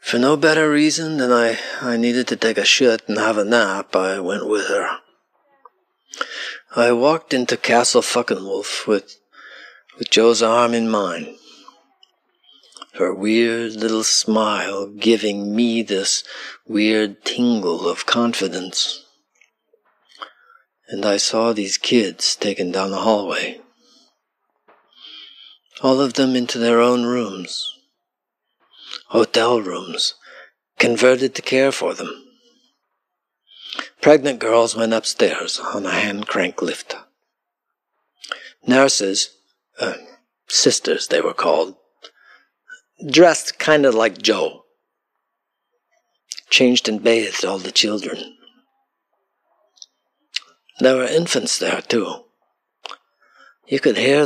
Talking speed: 110 wpm